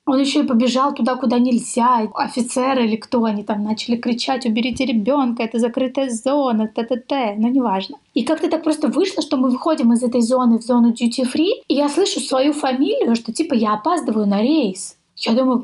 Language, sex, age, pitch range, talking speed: Russian, female, 20-39, 230-285 Hz, 190 wpm